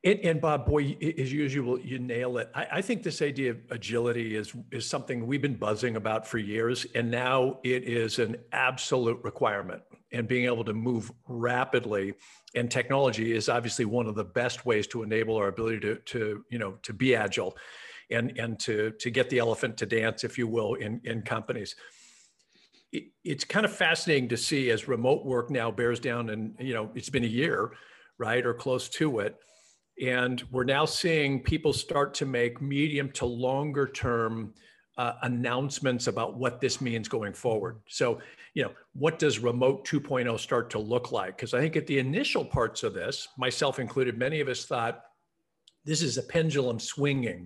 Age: 50-69